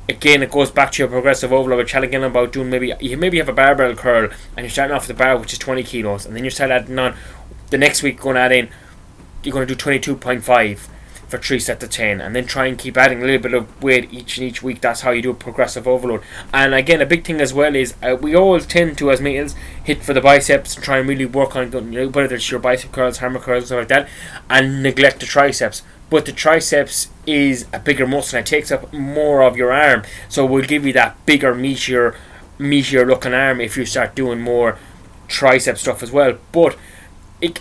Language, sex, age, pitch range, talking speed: English, male, 20-39, 125-140 Hz, 245 wpm